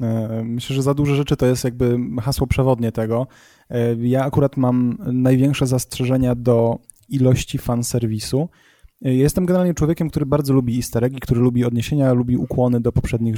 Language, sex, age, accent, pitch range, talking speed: Polish, male, 20-39, native, 125-145 Hz, 160 wpm